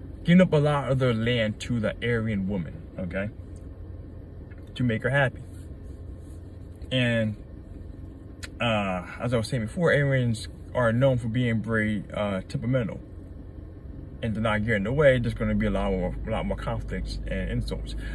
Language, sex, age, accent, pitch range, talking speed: English, male, 20-39, American, 90-125 Hz, 170 wpm